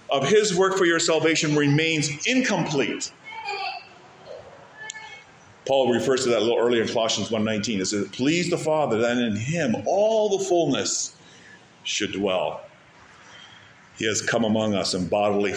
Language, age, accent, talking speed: English, 50-69, American, 145 wpm